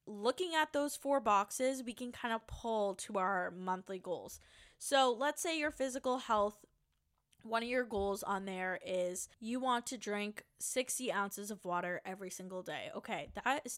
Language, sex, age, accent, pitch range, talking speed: English, female, 20-39, American, 185-225 Hz, 180 wpm